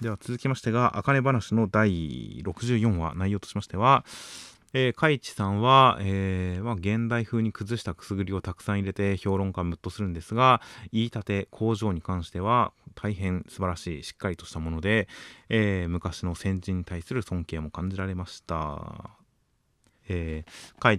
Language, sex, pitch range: Japanese, male, 85-110 Hz